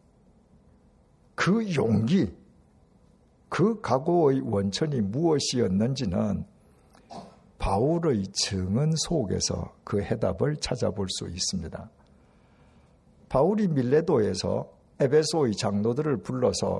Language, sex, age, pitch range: Korean, male, 60-79, 105-150 Hz